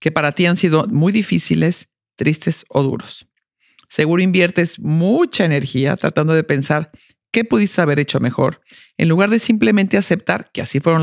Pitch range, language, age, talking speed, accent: 150-195 Hz, English, 50-69, 165 wpm, Mexican